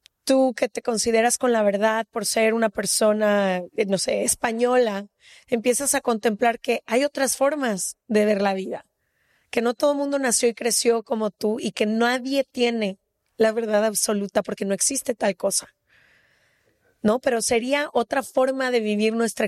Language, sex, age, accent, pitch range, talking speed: Spanish, female, 30-49, Mexican, 215-255 Hz, 170 wpm